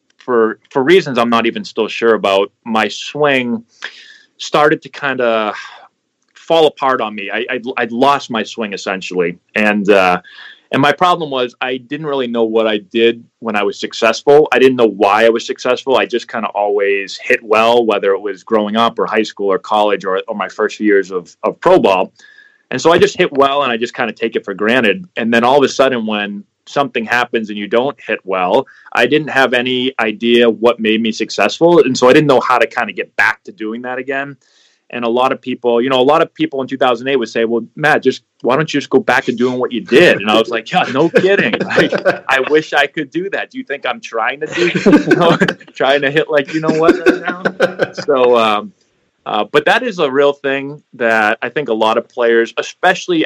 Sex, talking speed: male, 235 wpm